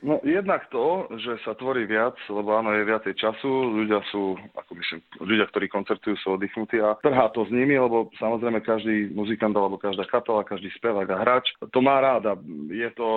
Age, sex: 30-49, male